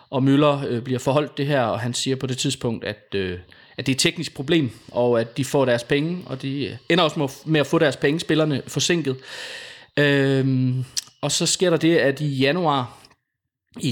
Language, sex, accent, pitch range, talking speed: Danish, male, native, 125-150 Hz, 195 wpm